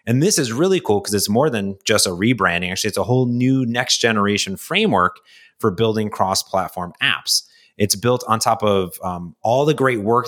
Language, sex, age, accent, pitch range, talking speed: English, male, 30-49, American, 95-115 Hz, 195 wpm